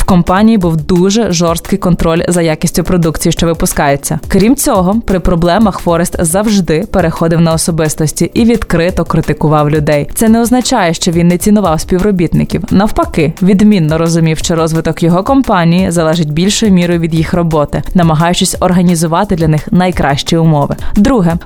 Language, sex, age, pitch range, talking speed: Ukrainian, female, 20-39, 165-200 Hz, 145 wpm